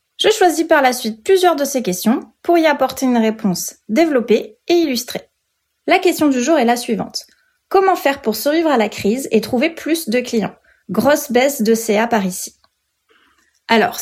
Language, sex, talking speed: French, female, 185 wpm